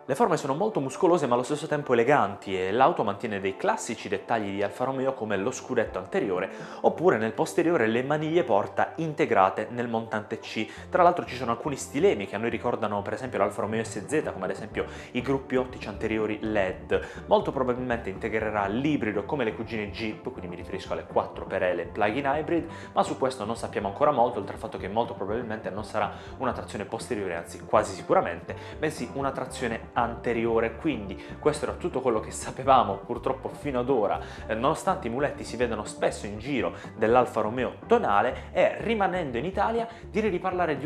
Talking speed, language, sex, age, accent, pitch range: 185 wpm, Italian, male, 20-39, native, 105-145 Hz